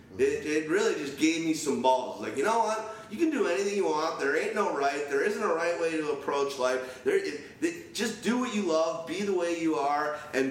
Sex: male